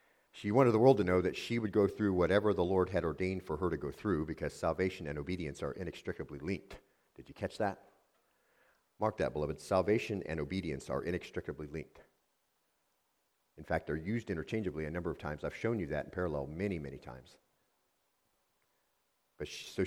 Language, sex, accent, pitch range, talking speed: English, male, American, 80-95 Hz, 185 wpm